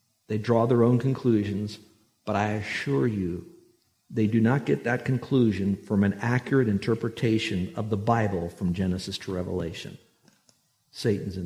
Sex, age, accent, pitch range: male, 60-79, American, 105-135 Hz